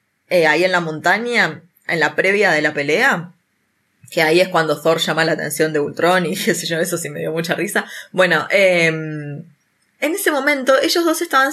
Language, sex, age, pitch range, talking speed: Spanish, female, 20-39, 160-210 Hz, 195 wpm